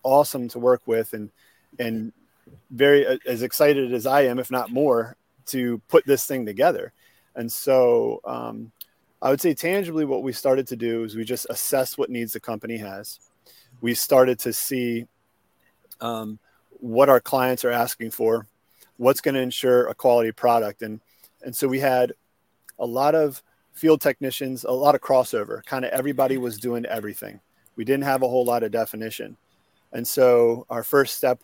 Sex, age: male, 40-59